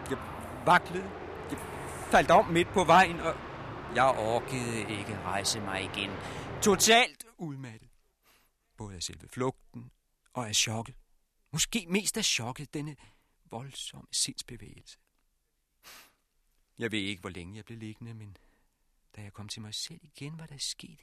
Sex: male